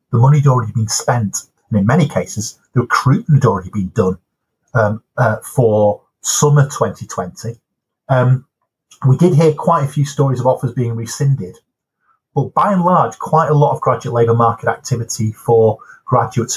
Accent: British